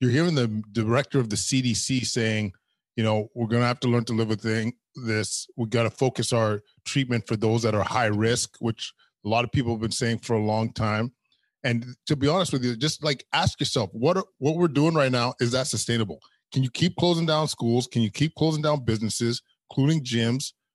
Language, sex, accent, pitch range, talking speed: English, male, American, 110-135 Hz, 230 wpm